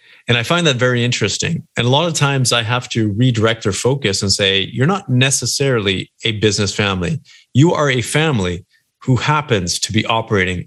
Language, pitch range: English, 105-150 Hz